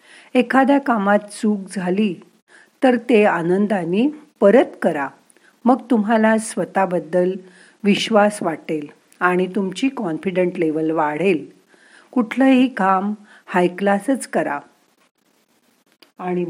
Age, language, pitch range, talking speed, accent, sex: 50-69, Marathi, 170-225 Hz, 85 wpm, native, female